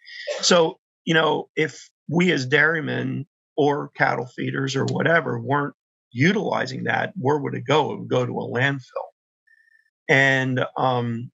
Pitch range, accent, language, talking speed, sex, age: 130-165 Hz, American, English, 140 wpm, male, 40-59